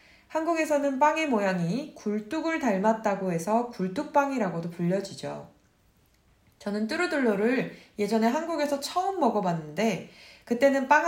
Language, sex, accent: Korean, female, native